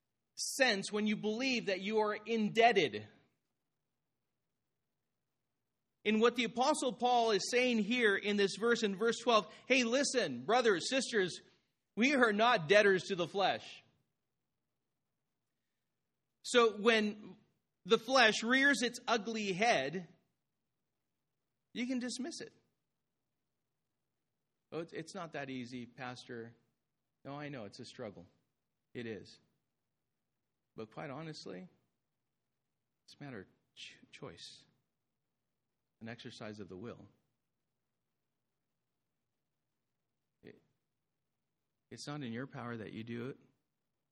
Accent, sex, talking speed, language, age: American, male, 110 wpm, English, 40-59